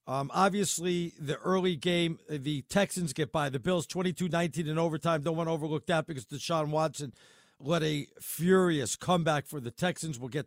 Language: English